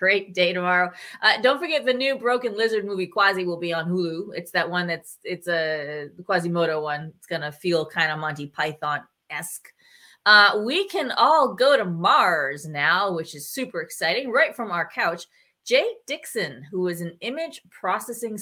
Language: English